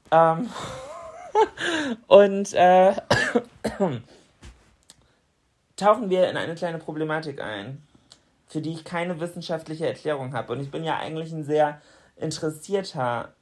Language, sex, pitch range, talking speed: German, male, 145-180 Hz, 105 wpm